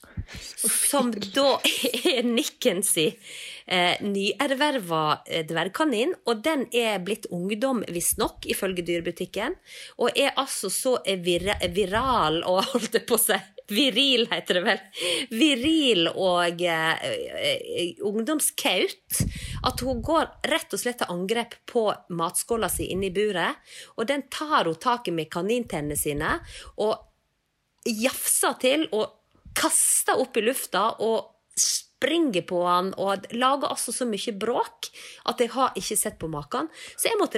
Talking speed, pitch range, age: 145 wpm, 185-265 Hz, 30-49